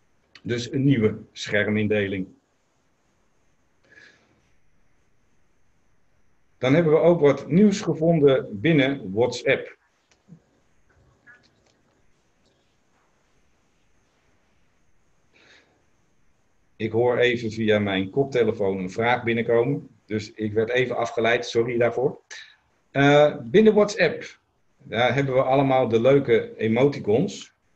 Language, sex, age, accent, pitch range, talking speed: Dutch, male, 50-69, Dutch, 105-140 Hz, 80 wpm